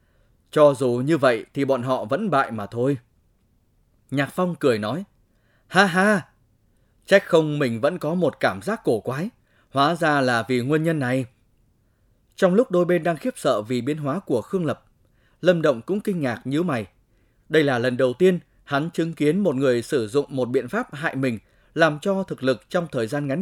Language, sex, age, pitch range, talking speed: Vietnamese, male, 20-39, 115-165 Hz, 200 wpm